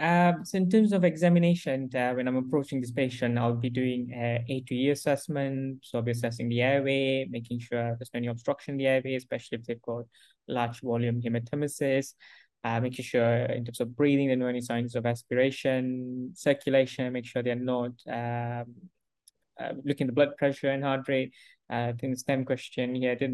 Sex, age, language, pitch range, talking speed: male, 20-39, English, 120-140 Hz, 200 wpm